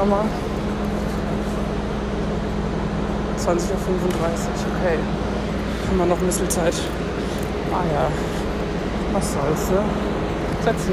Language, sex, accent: German, male, German